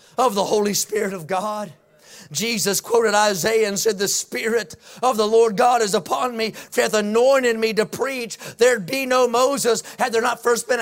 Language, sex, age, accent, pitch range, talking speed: English, male, 30-49, American, 245-305 Hz, 195 wpm